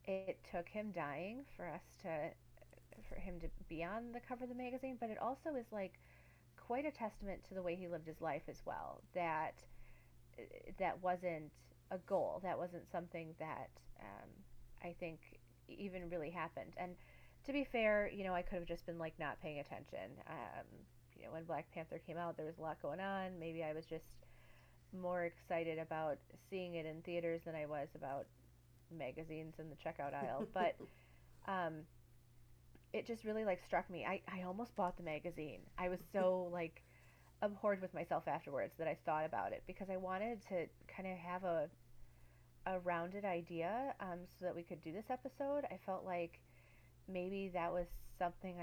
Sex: female